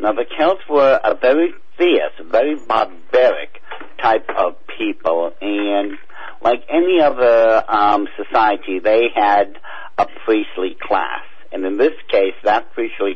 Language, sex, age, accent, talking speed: English, male, 50-69, American, 130 wpm